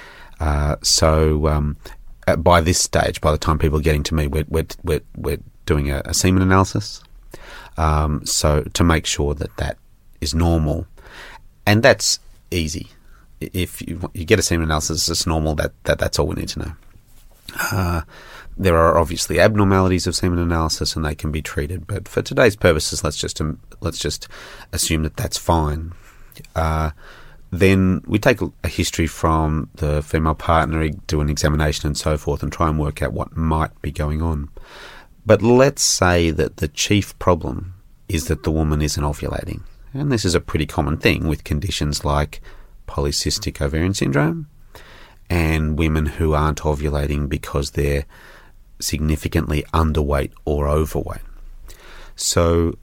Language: English